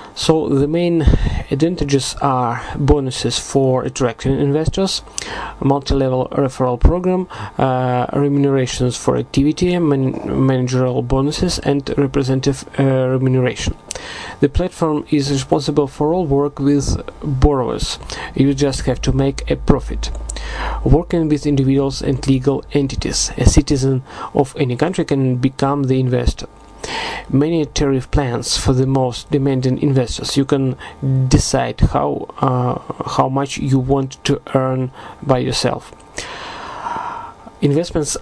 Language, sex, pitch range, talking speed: Russian, male, 130-145 Hz, 120 wpm